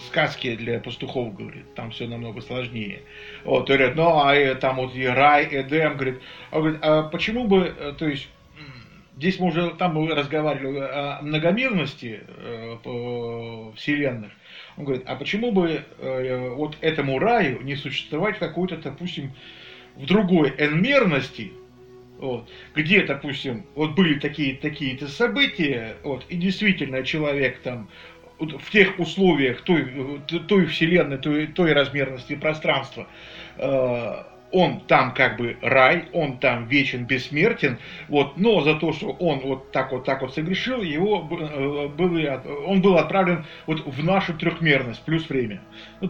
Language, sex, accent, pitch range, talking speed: Russian, male, native, 130-170 Hz, 145 wpm